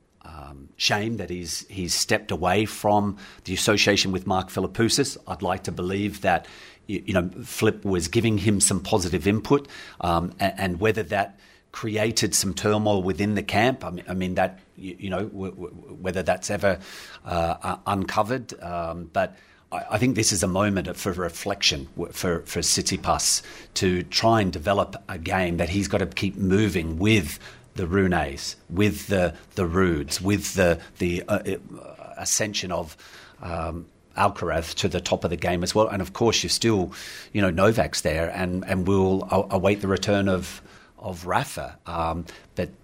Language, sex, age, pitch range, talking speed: English, male, 40-59, 90-100 Hz, 175 wpm